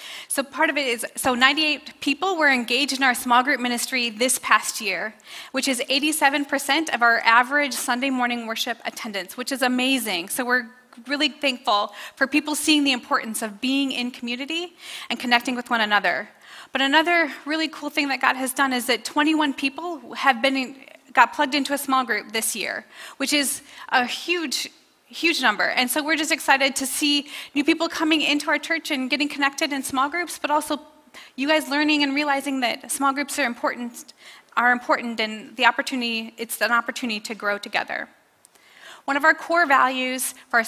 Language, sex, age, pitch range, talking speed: English, female, 30-49, 240-295 Hz, 185 wpm